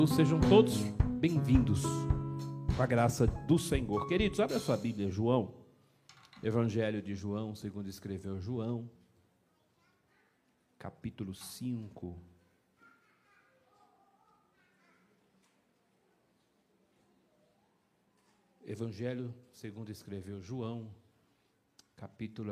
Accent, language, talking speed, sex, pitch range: Brazilian, Portuguese, 70 wpm, male, 105-135 Hz